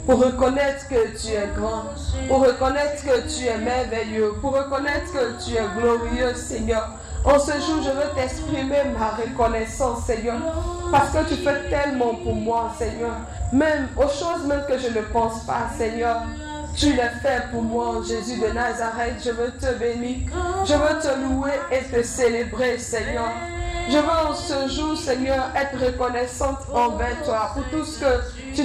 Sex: female